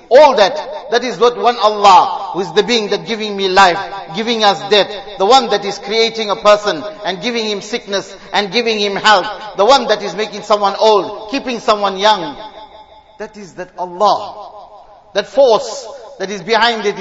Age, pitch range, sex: 50-69, 165-215 Hz, male